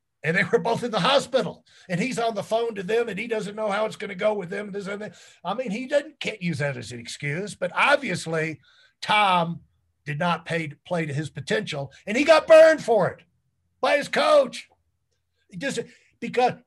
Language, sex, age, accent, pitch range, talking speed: English, male, 50-69, American, 155-220 Hz, 210 wpm